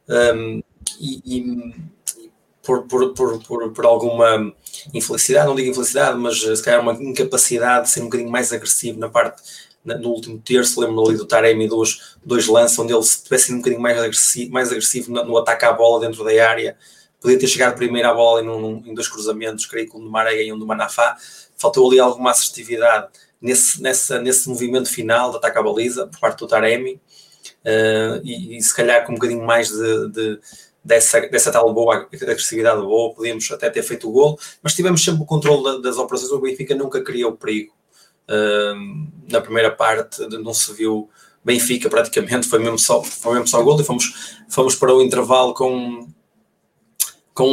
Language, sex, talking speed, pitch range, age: Portuguese, male, 190 wpm, 115-130 Hz, 20-39